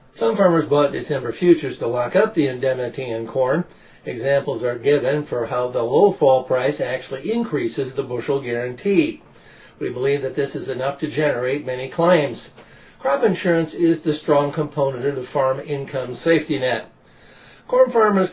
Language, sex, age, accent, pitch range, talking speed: English, male, 50-69, American, 135-180 Hz, 165 wpm